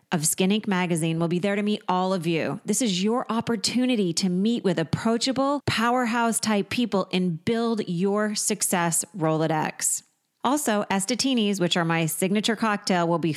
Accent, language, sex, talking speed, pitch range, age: American, English, female, 165 wpm, 170-215 Hz, 30-49